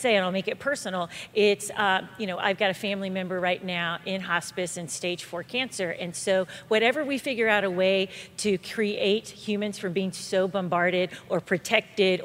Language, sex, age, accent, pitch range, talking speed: English, female, 40-59, American, 185-215 Hz, 195 wpm